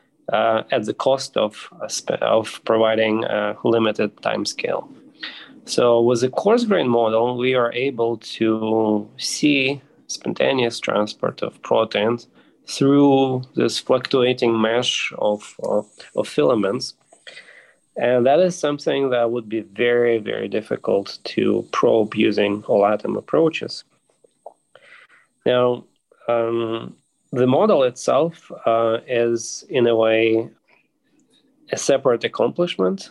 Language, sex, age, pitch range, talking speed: English, male, 20-39, 110-130 Hz, 115 wpm